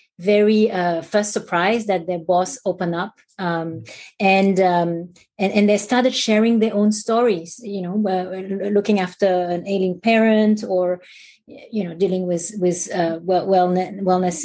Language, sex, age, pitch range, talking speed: English, female, 30-49, 180-210 Hz, 145 wpm